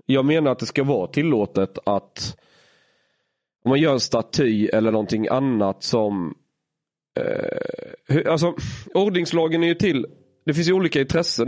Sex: male